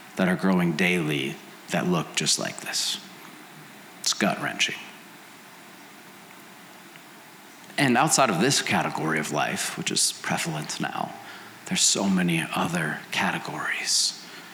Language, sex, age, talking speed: English, male, 30-49, 110 wpm